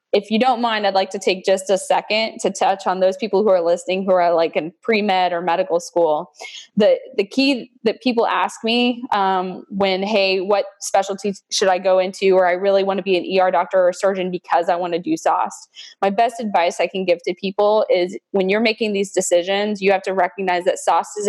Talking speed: 230 wpm